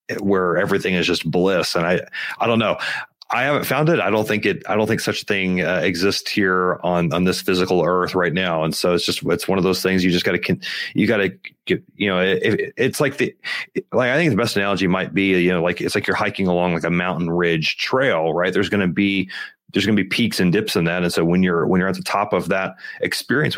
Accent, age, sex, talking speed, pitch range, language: American, 30-49, male, 265 wpm, 85-100 Hz, English